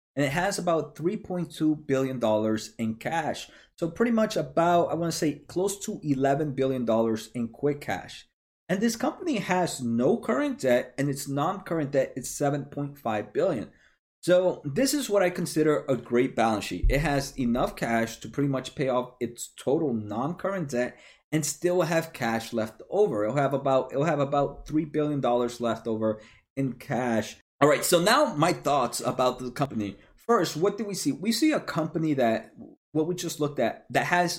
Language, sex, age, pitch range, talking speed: English, male, 30-49, 120-170 Hz, 185 wpm